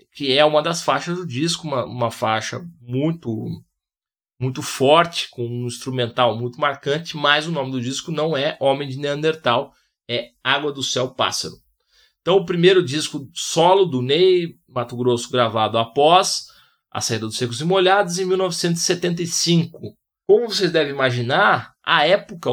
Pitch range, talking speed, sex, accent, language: 125-175 Hz, 155 wpm, male, Brazilian, Portuguese